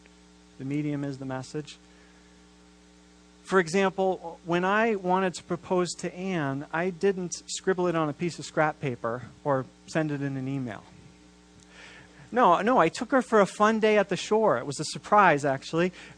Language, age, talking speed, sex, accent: English, 40-59, 175 wpm, male, American